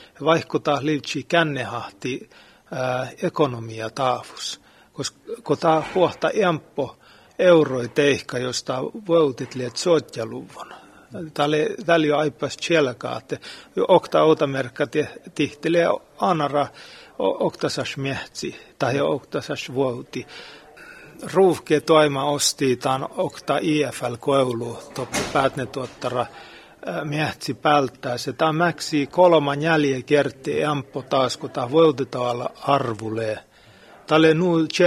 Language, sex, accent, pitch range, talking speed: Finnish, male, native, 130-160 Hz, 80 wpm